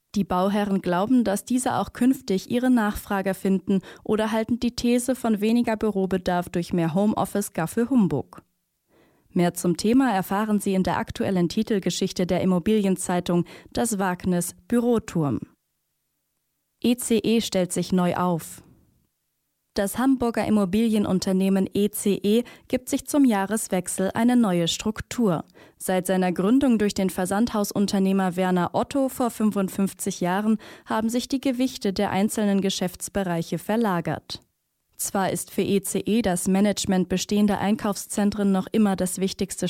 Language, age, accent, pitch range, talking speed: German, 20-39, German, 185-225 Hz, 125 wpm